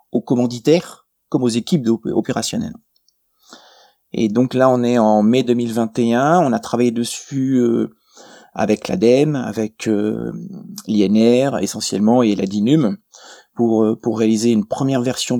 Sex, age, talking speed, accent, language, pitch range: male, 30-49, 125 wpm, French, French, 110-130 Hz